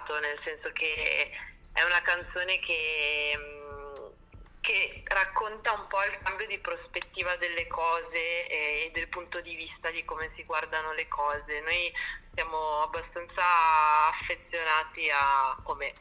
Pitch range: 155-180 Hz